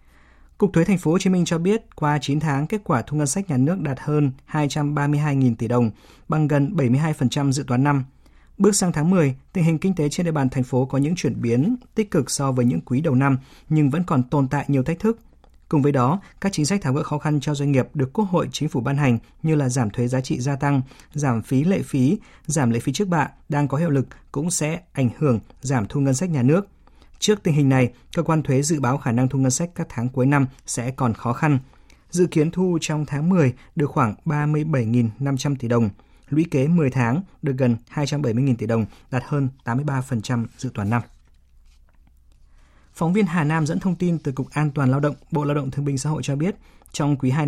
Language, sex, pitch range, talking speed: Vietnamese, male, 125-155 Hz, 235 wpm